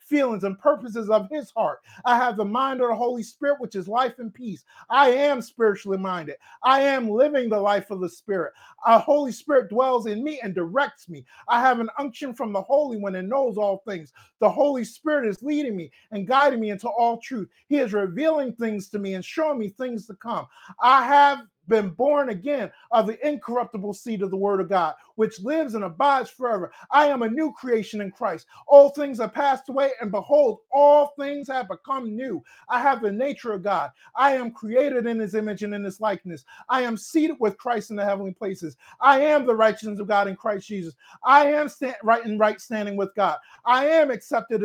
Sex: male